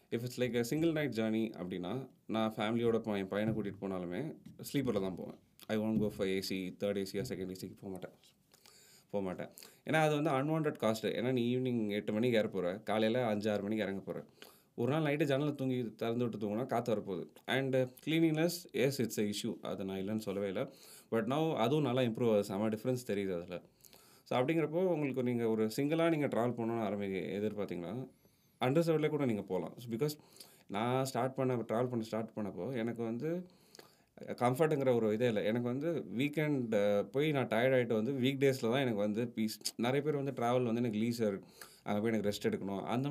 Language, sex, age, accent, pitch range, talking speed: Tamil, male, 30-49, native, 105-135 Hz, 185 wpm